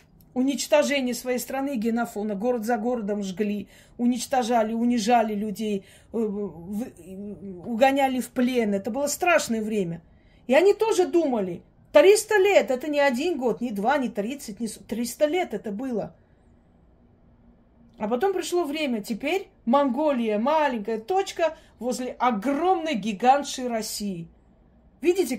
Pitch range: 205-270 Hz